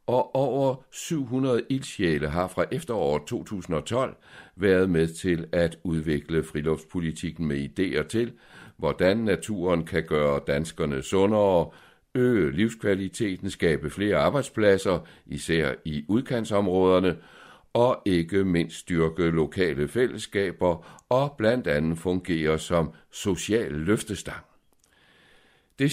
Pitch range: 80-115 Hz